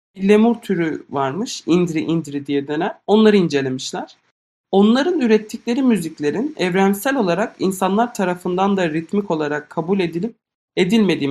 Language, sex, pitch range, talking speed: Turkish, male, 145-210 Hz, 115 wpm